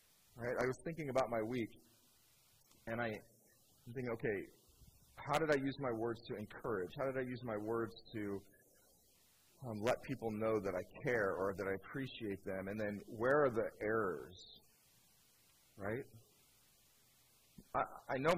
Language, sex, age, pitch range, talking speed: English, male, 30-49, 105-125 Hz, 160 wpm